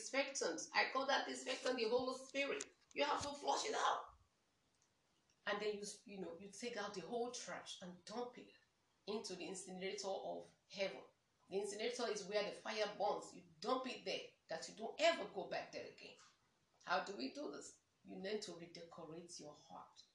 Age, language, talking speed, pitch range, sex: 40-59, English, 190 wpm, 200-260 Hz, female